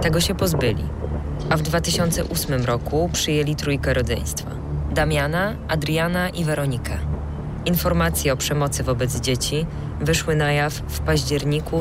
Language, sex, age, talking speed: Polish, female, 20-39, 125 wpm